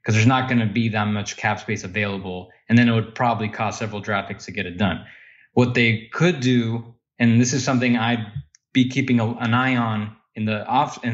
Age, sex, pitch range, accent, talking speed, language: 20-39, male, 105-125 Hz, American, 220 wpm, English